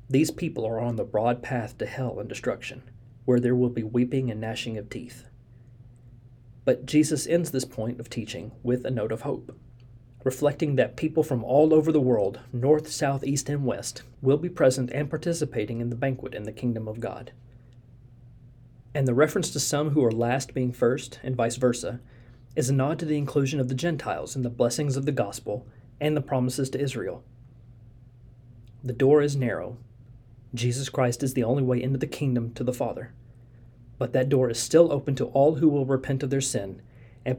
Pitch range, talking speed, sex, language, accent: 120-135 Hz, 195 wpm, male, English, American